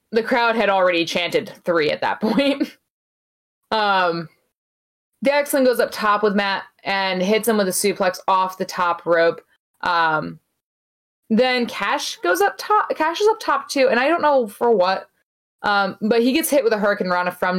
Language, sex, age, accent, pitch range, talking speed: English, female, 20-39, American, 175-230 Hz, 180 wpm